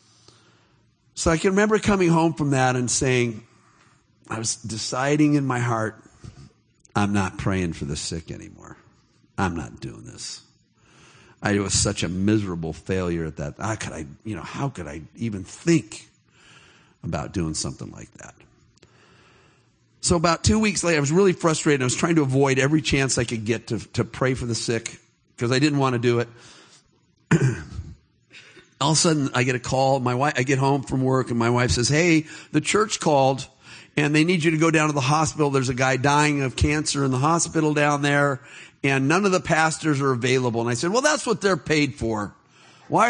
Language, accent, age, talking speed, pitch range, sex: English, American, 50-69, 200 wpm, 115-155 Hz, male